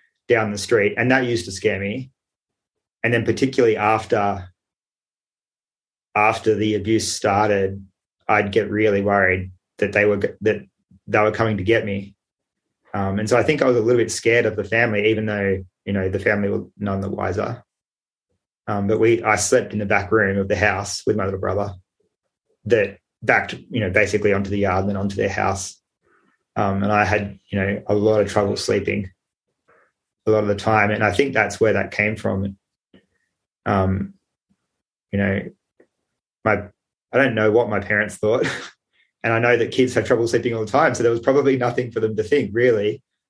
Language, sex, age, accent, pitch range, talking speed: English, male, 20-39, Australian, 100-110 Hz, 195 wpm